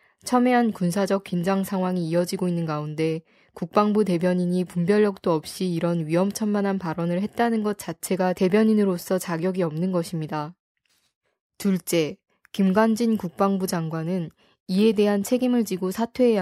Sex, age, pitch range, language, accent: female, 20-39, 175-205 Hz, Korean, native